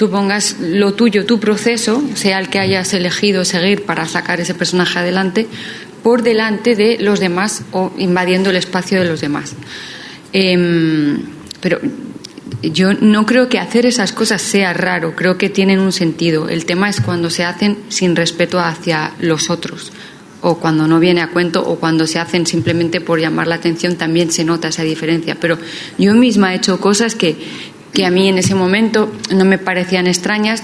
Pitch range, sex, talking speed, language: 175-205 Hz, female, 180 wpm, English